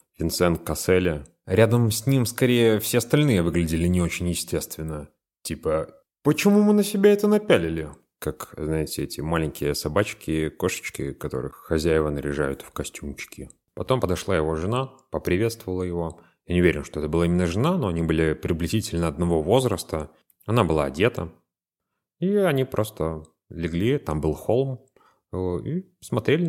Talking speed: 145 wpm